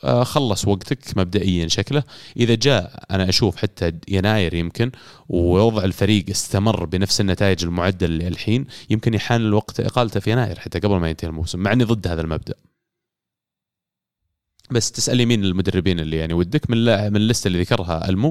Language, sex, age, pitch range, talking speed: Arabic, male, 30-49, 90-115 Hz, 155 wpm